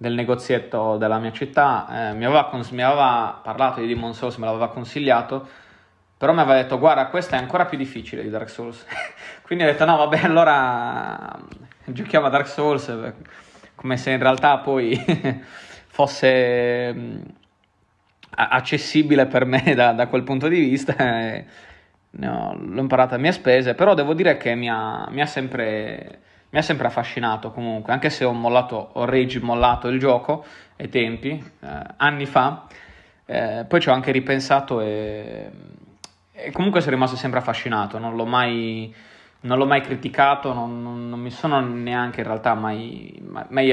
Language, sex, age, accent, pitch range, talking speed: Italian, male, 20-39, native, 115-140 Hz, 160 wpm